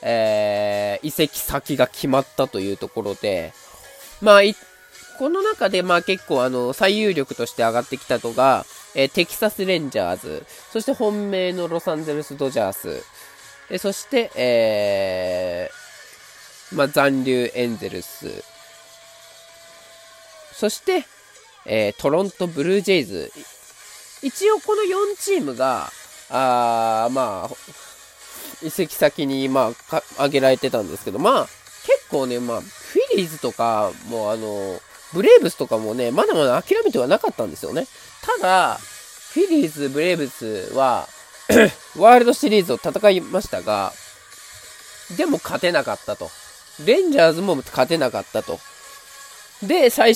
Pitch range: 135-220 Hz